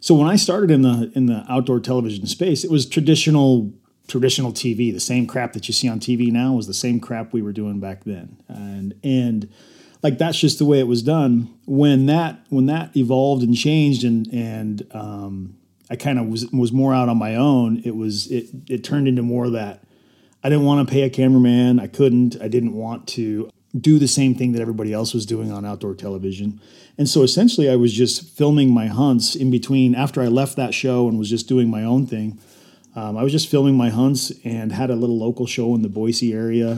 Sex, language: male, English